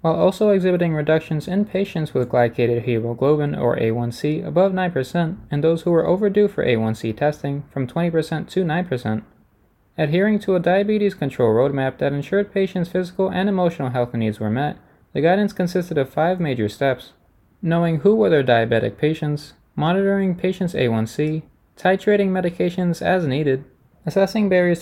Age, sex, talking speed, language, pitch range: 20-39, male, 150 wpm, English, 125-180 Hz